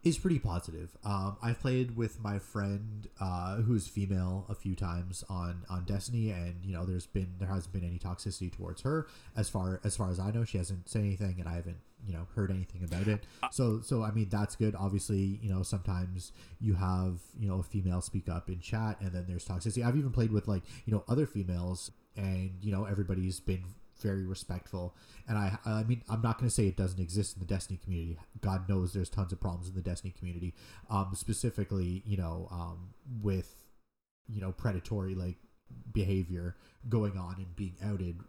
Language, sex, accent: English, male, American